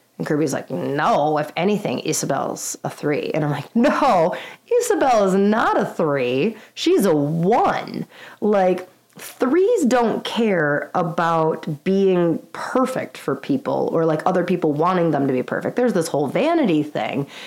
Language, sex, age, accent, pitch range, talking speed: English, female, 30-49, American, 160-225 Hz, 150 wpm